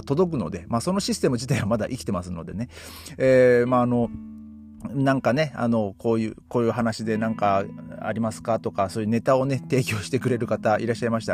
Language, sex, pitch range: Japanese, male, 95-125 Hz